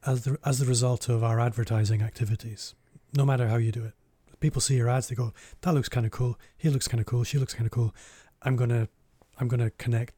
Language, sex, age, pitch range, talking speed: English, male, 30-49, 115-130 Hz, 230 wpm